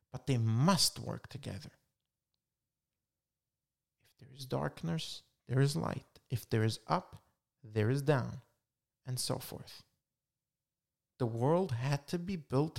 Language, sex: English, male